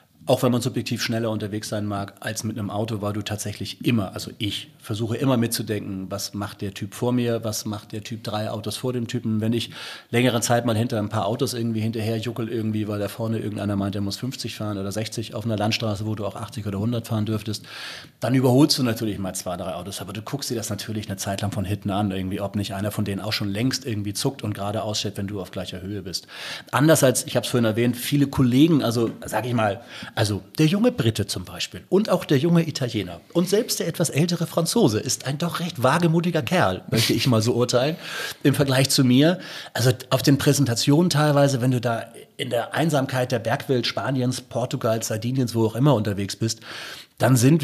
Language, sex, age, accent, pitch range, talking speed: German, male, 40-59, German, 105-135 Hz, 225 wpm